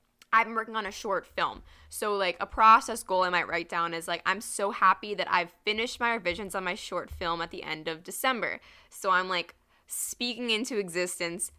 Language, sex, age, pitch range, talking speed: English, female, 10-29, 170-200 Hz, 210 wpm